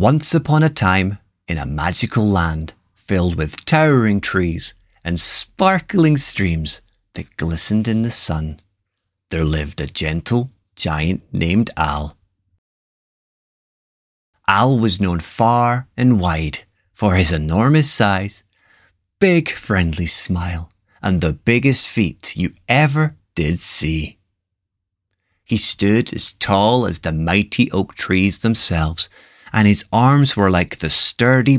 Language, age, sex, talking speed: English, 30-49, male, 125 wpm